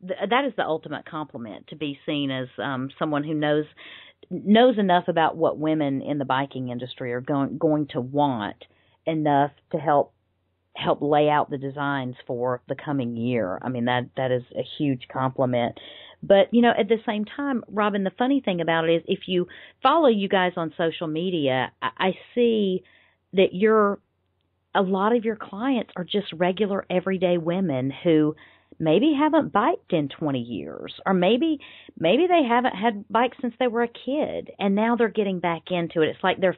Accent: American